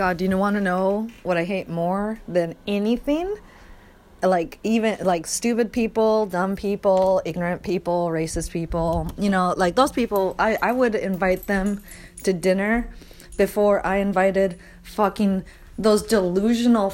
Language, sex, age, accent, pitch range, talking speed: English, female, 30-49, American, 190-245 Hz, 150 wpm